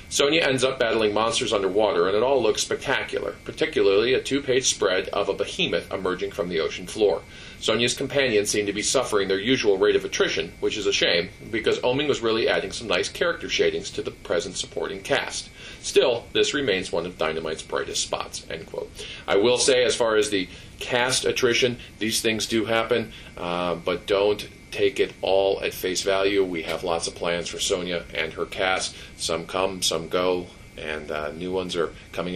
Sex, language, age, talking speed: male, English, 40-59, 195 wpm